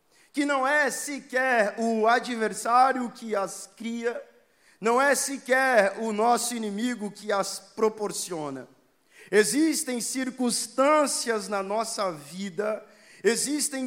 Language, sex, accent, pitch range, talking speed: Portuguese, male, Brazilian, 205-270 Hz, 105 wpm